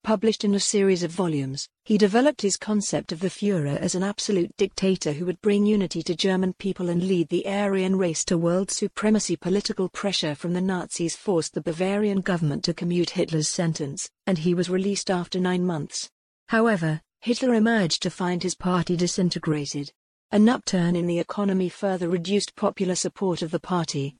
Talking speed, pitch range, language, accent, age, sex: 180 wpm, 170-200 Hz, English, British, 40-59, female